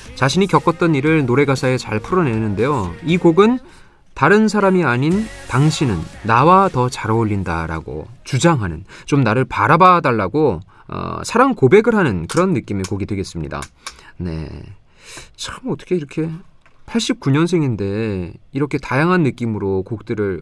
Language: Korean